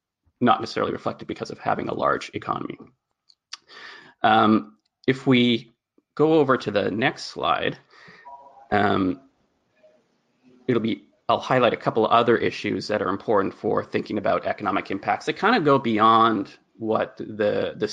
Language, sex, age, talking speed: English, male, 30-49, 145 wpm